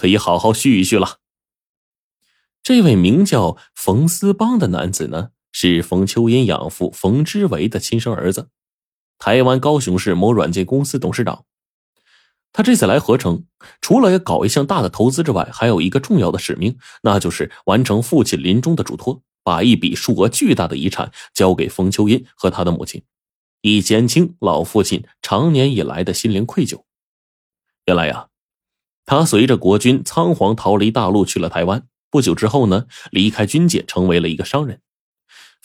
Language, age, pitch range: Chinese, 20-39, 95-150 Hz